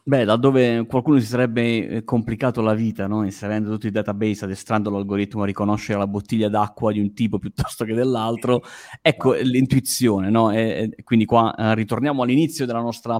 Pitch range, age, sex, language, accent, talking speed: 110-135 Hz, 20-39, male, Italian, native, 175 wpm